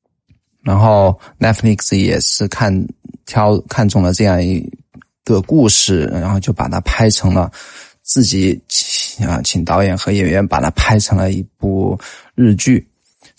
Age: 20-39